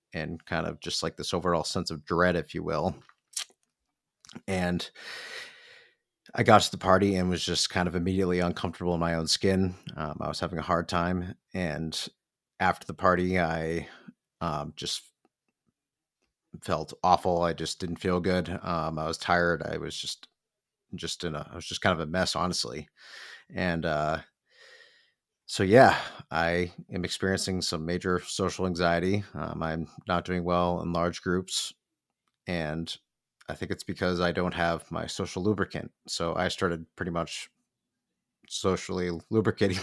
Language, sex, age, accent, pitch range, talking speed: English, male, 30-49, American, 85-95 Hz, 160 wpm